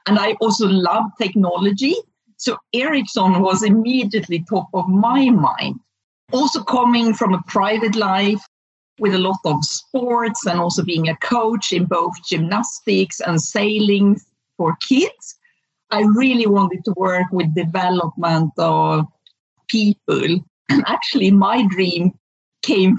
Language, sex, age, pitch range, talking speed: English, female, 50-69, 180-230 Hz, 130 wpm